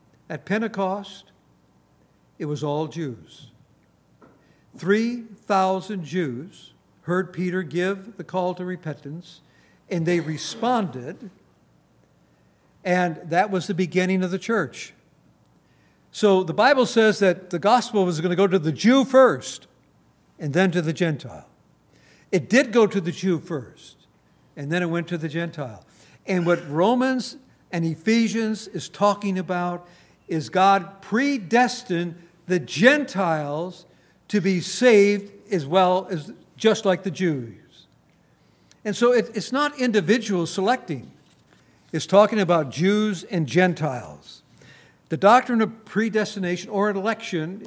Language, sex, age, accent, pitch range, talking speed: English, male, 60-79, American, 160-210 Hz, 125 wpm